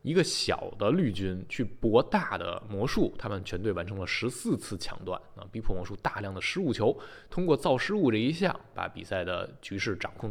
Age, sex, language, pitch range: 20-39, male, Chinese, 95-130 Hz